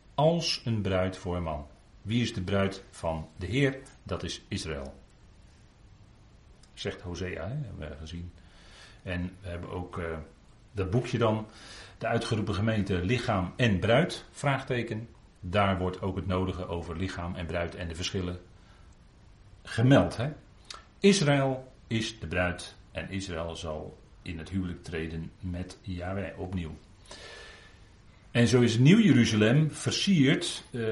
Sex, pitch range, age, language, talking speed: male, 90-115 Hz, 40-59, Dutch, 140 wpm